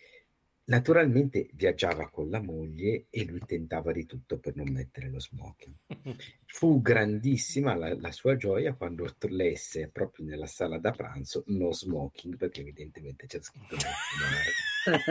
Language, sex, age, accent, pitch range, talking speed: Italian, male, 50-69, native, 80-130 Hz, 135 wpm